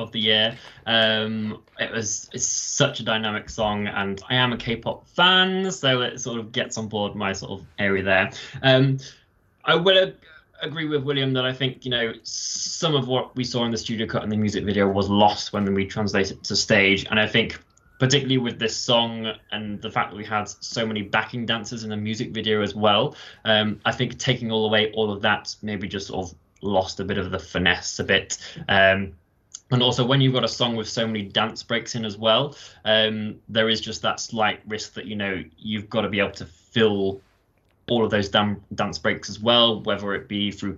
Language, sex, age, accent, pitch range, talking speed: English, male, 20-39, British, 100-120 Hz, 220 wpm